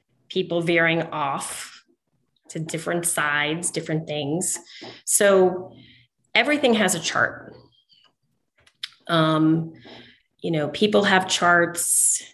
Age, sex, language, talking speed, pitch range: 30-49, female, English, 90 wpm, 155-180 Hz